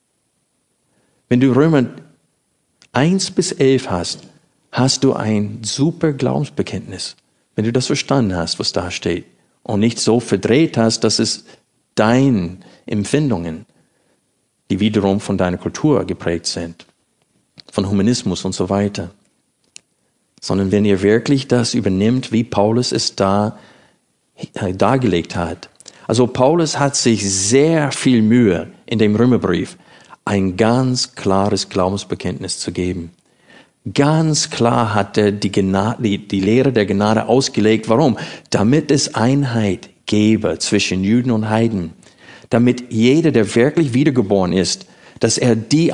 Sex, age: male, 50-69